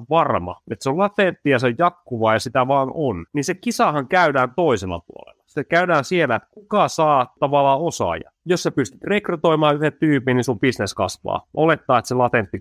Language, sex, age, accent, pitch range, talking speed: Finnish, male, 30-49, native, 115-165 Hz, 195 wpm